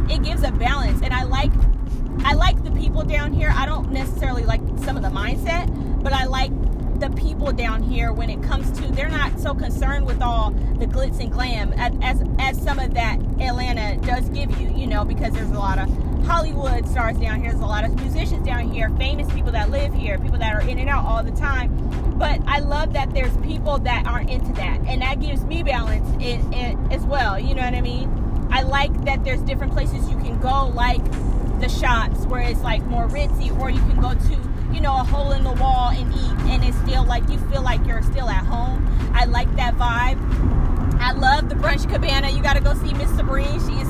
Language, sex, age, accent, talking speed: English, female, 20-39, American, 230 wpm